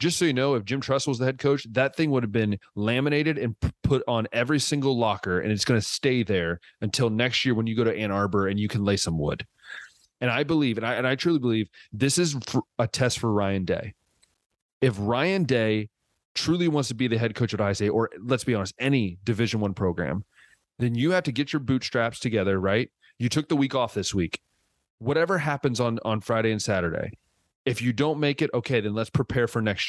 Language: English